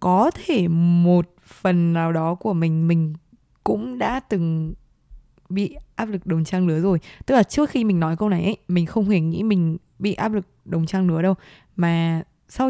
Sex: female